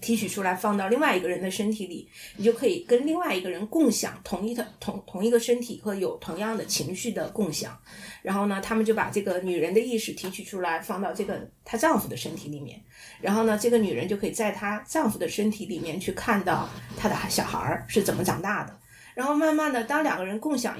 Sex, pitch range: female, 185-235 Hz